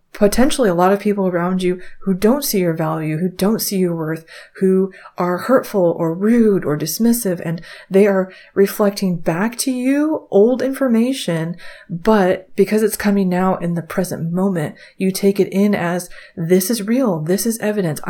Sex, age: female, 30-49